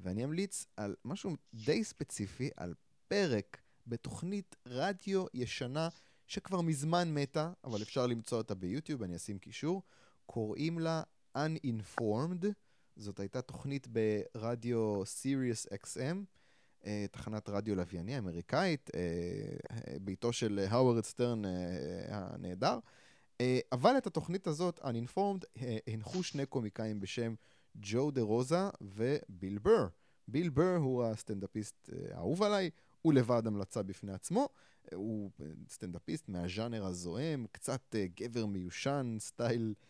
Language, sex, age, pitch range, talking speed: Hebrew, male, 20-39, 105-150 Hz, 110 wpm